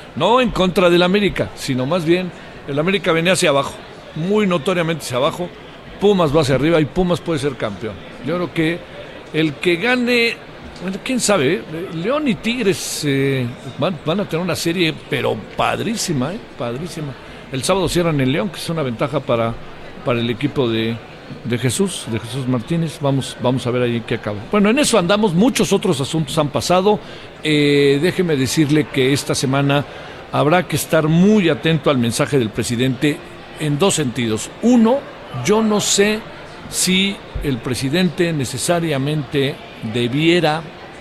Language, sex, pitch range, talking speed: Spanish, male, 130-180 Hz, 160 wpm